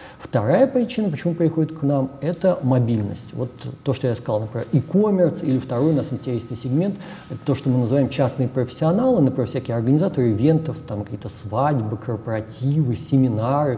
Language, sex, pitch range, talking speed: Russian, male, 115-145 Hz, 160 wpm